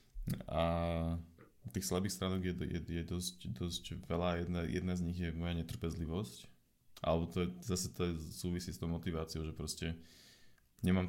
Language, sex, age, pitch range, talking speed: Slovak, male, 20-39, 80-90 Hz, 155 wpm